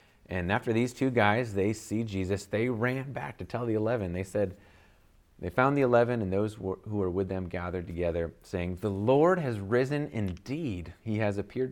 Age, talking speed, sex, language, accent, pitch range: 30-49, 205 wpm, male, English, American, 85-115 Hz